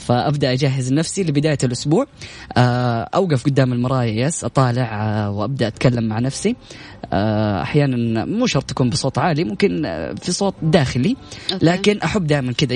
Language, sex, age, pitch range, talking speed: Arabic, female, 10-29, 125-165 Hz, 130 wpm